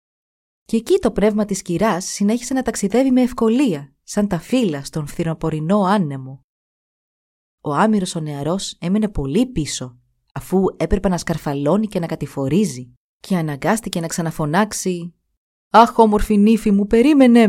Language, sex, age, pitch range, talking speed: Greek, female, 30-49, 155-215 Hz, 135 wpm